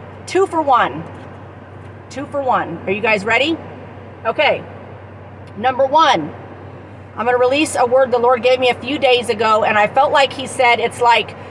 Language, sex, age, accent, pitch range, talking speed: English, female, 40-59, American, 200-285 Hz, 180 wpm